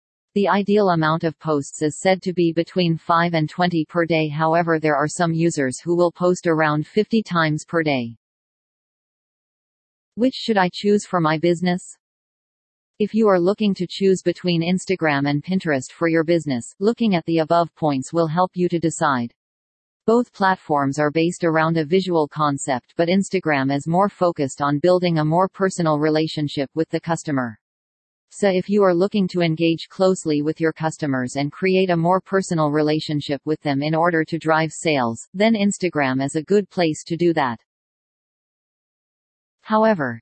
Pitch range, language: 150-185 Hz, English